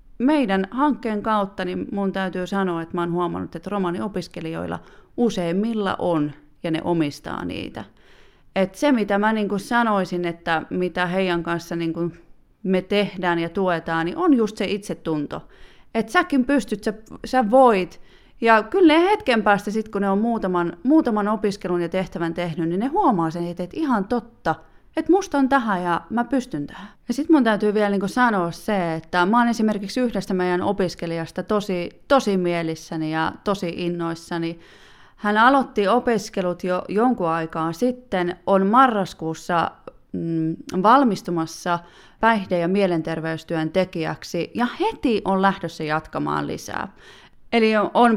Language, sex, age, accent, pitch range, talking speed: Finnish, female, 30-49, native, 165-220 Hz, 145 wpm